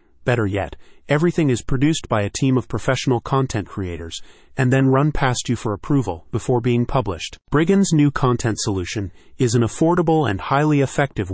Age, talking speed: 30-49, 170 wpm